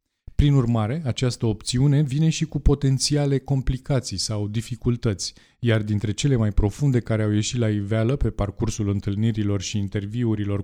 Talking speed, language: 145 wpm, Romanian